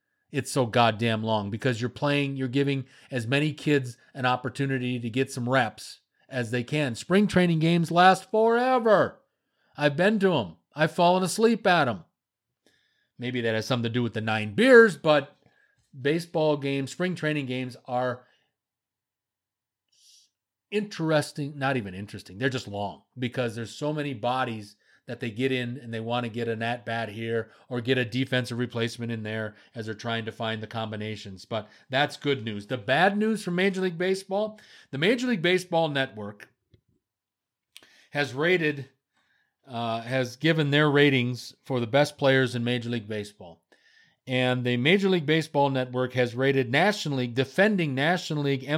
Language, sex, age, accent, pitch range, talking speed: English, male, 30-49, American, 120-155 Hz, 165 wpm